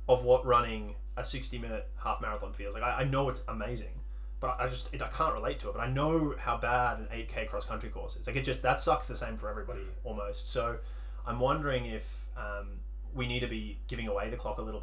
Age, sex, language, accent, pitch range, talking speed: 20-39, male, English, Australian, 100-125 Hz, 235 wpm